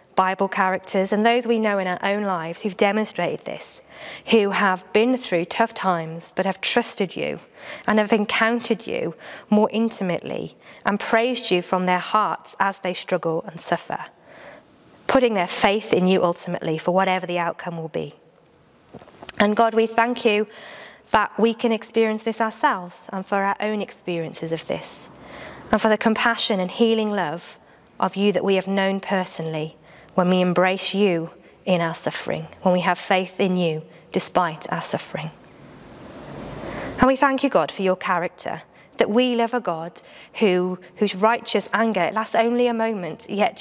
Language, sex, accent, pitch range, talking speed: English, female, British, 180-225 Hz, 165 wpm